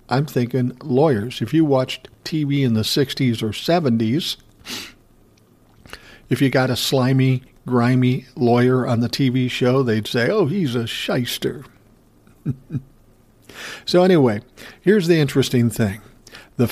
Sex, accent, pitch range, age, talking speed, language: male, American, 120-140 Hz, 60-79, 130 wpm, English